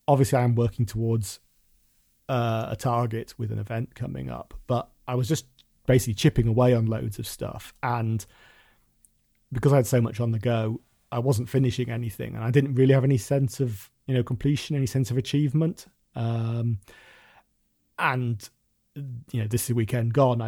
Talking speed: 175 wpm